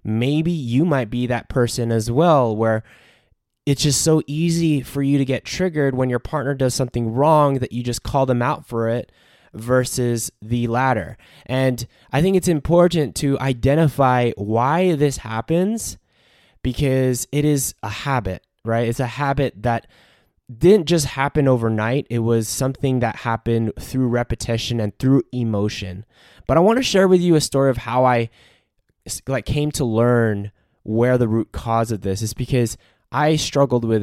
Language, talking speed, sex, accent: English, 170 wpm, male, American